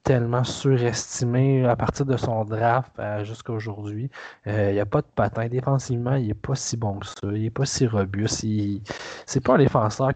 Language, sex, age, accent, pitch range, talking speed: French, male, 20-39, Canadian, 110-130 Hz, 195 wpm